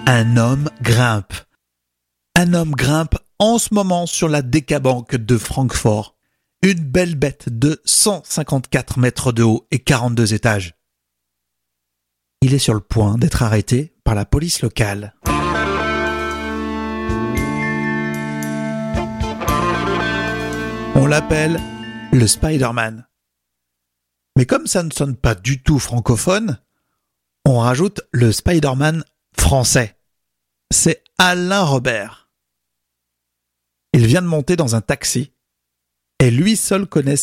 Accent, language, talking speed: French, French, 110 wpm